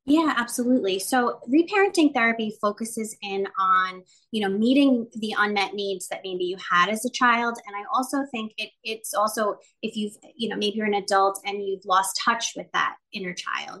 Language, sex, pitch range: English, female, 195-225 Hz